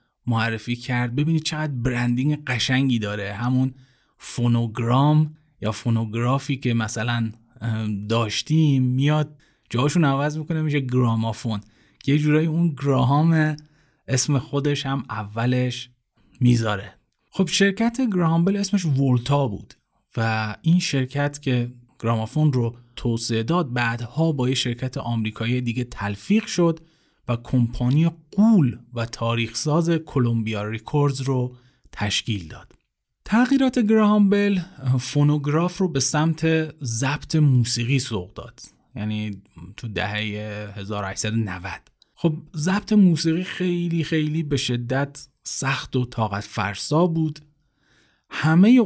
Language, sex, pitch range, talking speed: Persian, male, 115-155 Hz, 110 wpm